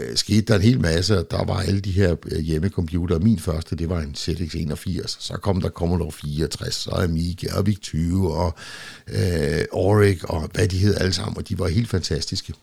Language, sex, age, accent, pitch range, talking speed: Danish, male, 60-79, native, 85-105 Hz, 210 wpm